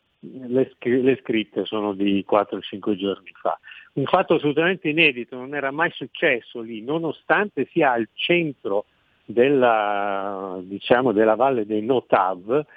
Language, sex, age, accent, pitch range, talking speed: Italian, male, 50-69, native, 110-160 Hz, 130 wpm